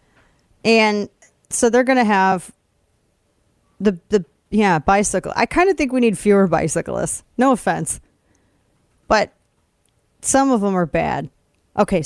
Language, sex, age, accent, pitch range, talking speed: English, female, 30-49, American, 185-240 Hz, 135 wpm